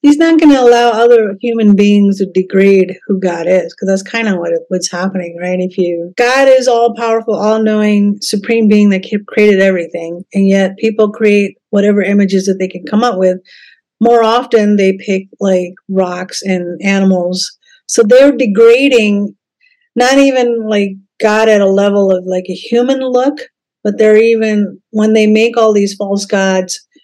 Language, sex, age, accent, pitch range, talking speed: English, female, 50-69, American, 185-220 Hz, 175 wpm